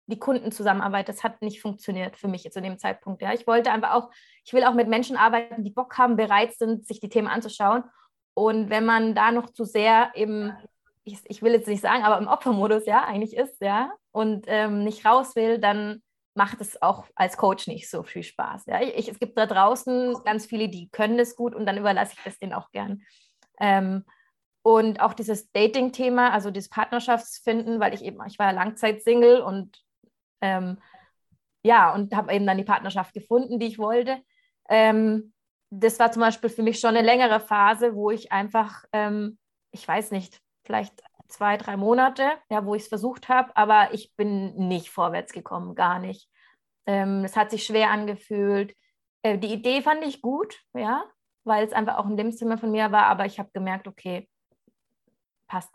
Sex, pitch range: female, 200-230 Hz